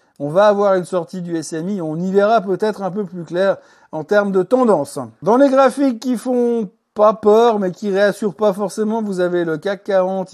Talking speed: 210 wpm